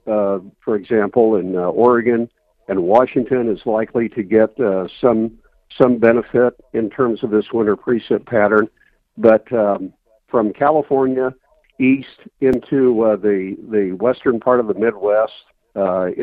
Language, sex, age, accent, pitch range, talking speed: English, male, 50-69, American, 105-130 Hz, 140 wpm